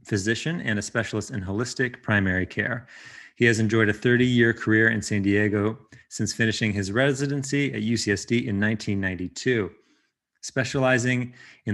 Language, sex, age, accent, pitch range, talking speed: English, male, 30-49, American, 105-125 Hz, 145 wpm